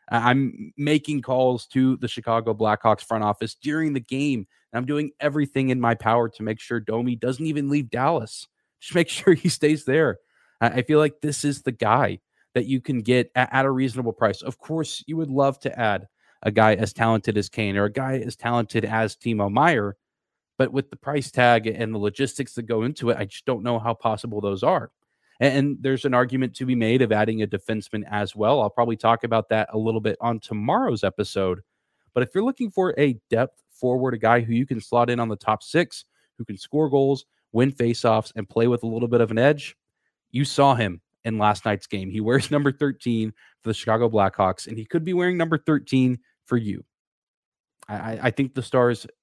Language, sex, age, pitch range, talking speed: English, male, 20-39, 110-135 Hz, 215 wpm